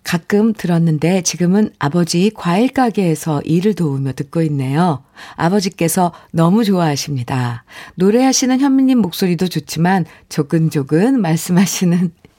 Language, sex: Korean, female